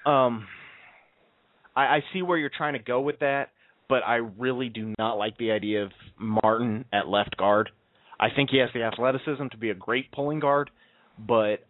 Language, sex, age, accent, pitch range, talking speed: English, male, 30-49, American, 105-130 Hz, 190 wpm